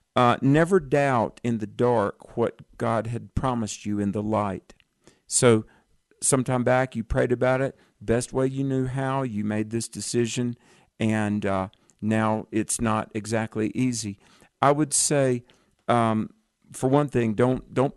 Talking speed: 155 wpm